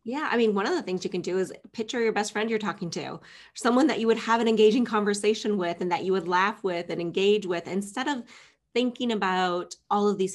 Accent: American